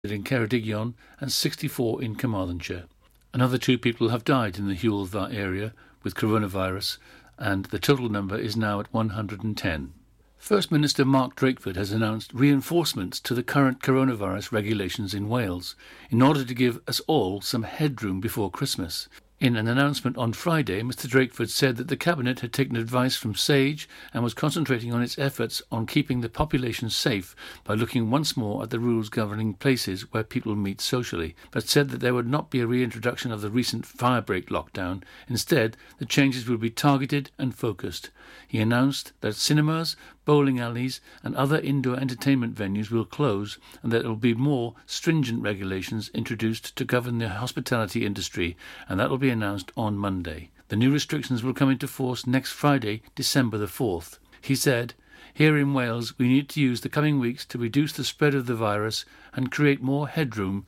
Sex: male